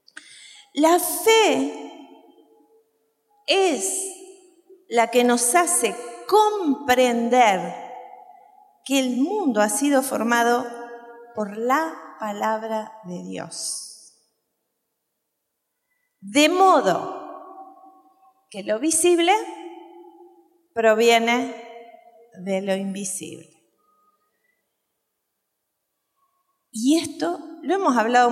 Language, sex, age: Spanish, female, 30-49